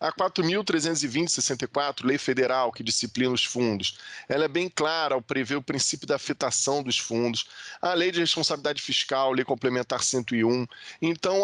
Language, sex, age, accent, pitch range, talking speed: Portuguese, male, 20-39, Brazilian, 125-165 Hz, 150 wpm